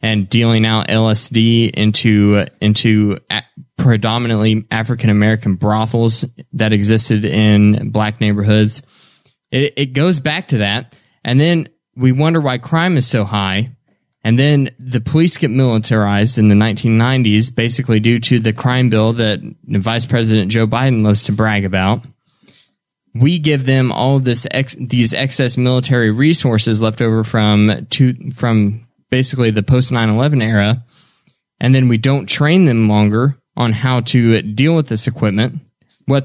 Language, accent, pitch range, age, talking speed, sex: English, American, 105-135 Hz, 20-39, 150 wpm, male